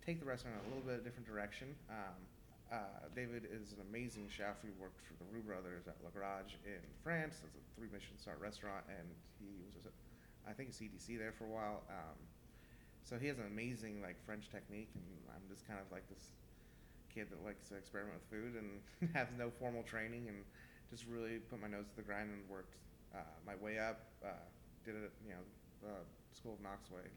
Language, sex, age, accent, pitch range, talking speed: English, male, 30-49, American, 100-115 Hz, 225 wpm